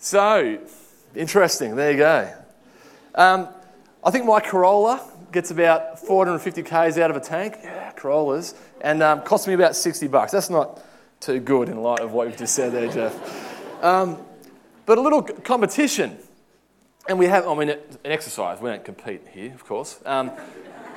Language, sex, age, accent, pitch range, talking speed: English, male, 20-39, Australian, 150-215 Hz, 170 wpm